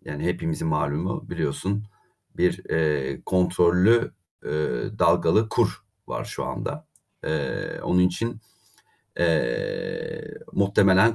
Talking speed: 95 wpm